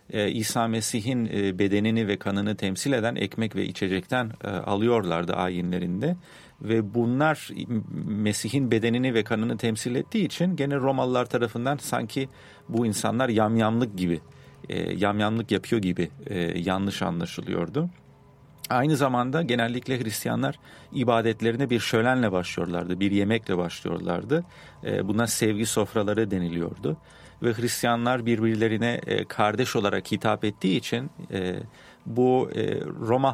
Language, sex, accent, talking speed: English, male, Turkish, 105 wpm